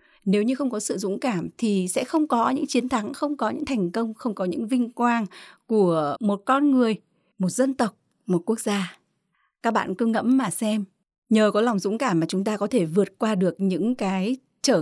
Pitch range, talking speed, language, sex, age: 195-260 Hz, 225 wpm, Vietnamese, female, 20-39